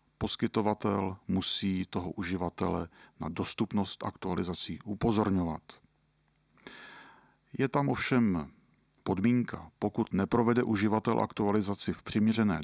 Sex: male